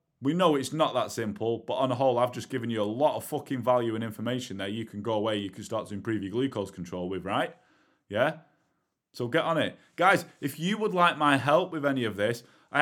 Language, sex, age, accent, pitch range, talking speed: English, male, 20-39, British, 115-145 Hz, 250 wpm